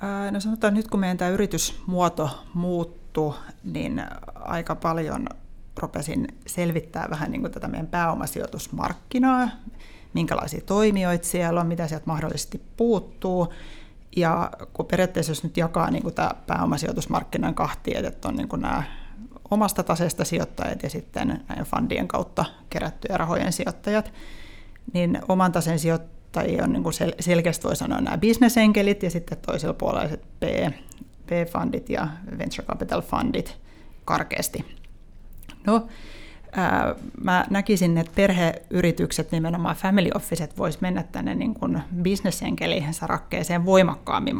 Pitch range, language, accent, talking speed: 165-200 Hz, Finnish, native, 120 wpm